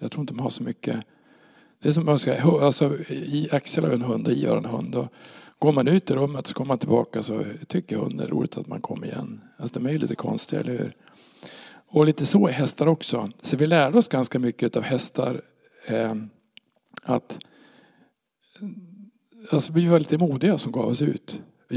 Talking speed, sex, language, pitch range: 205 wpm, male, Swedish, 125-155 Hz